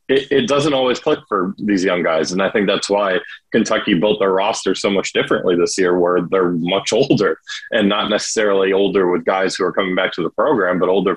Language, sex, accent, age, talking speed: English, male, American, 20-39, 220 wpm